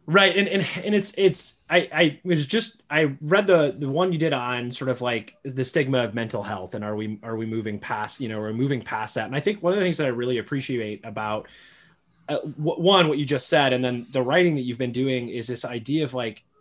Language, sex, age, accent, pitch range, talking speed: English, male, 20-39, American, 125-170 Hz, 260 wpm